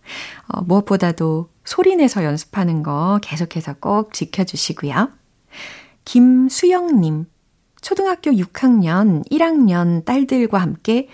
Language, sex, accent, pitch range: Korean, female, native, 165-230 Hz